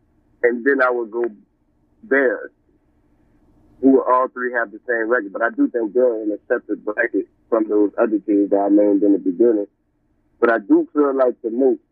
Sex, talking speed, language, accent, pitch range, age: male, 190 wpm, English, American, 100-130 Hz, 30-49